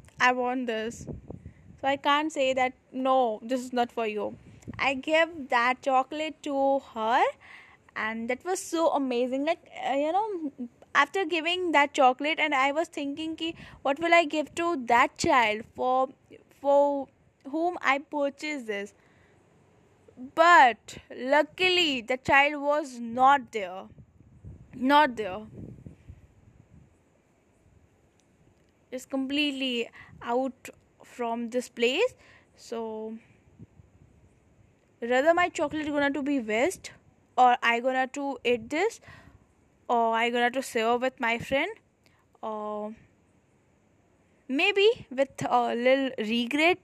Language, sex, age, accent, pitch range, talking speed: English, female, 10-29, Indian, 245-305 Hz, 120 wpm